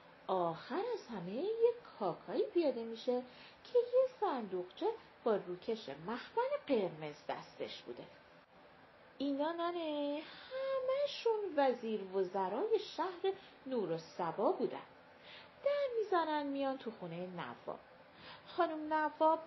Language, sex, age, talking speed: Persian, female, 40-59, 90 wpm